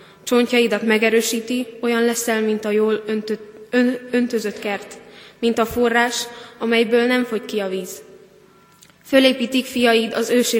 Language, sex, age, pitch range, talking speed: Hungarian, female, 20-39, 210-235 Hz, 125 wpm